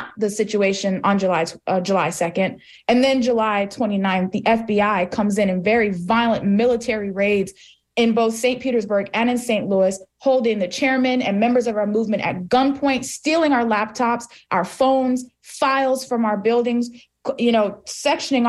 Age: 20-39